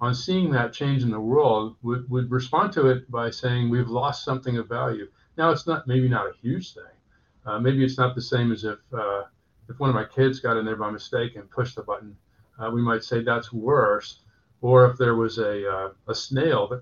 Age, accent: 50-69, American